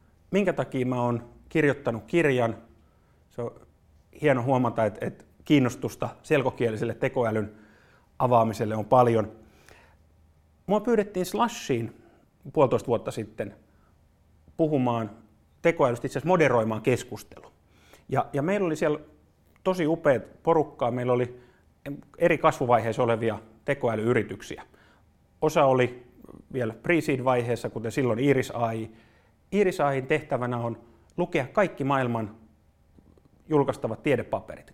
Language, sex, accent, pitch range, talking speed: Finnish, male, native, 110-155 Hz, 100 wpm